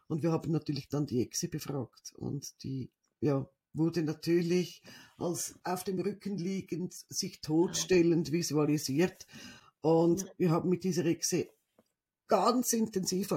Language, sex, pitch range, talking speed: German, female, 175-210 Hz, 125 wpm